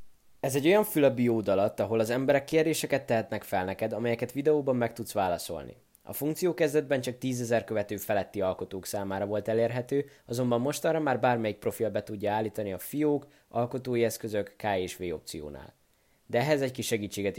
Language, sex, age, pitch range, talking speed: Hungarian, male, 20-39, 105-145 Hz, 175 wpm